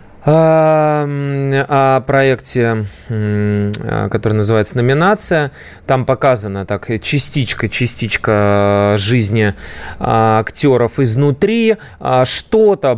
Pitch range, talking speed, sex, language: 110-150 Hz, 55 wpm, male, Russian